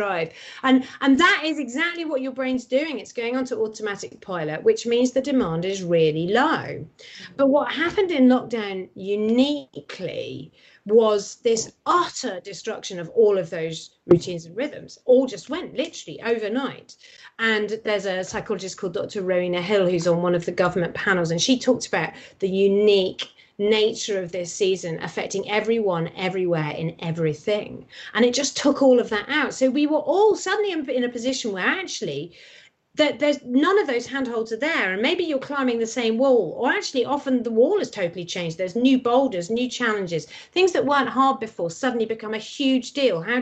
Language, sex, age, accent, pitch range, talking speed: English, female, 30-49, British, 195-275 Hz, 180 wpm